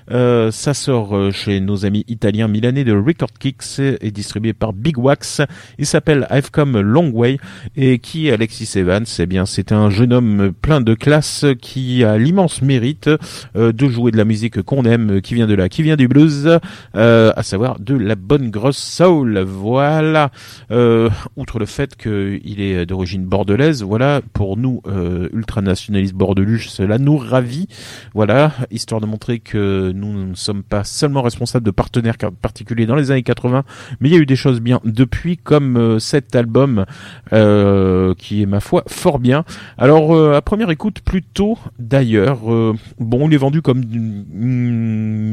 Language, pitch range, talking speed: French, 105-135 Hz, 180 wpm